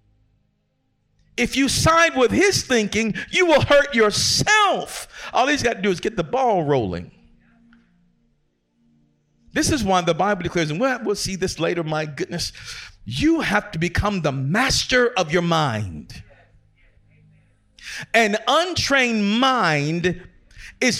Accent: American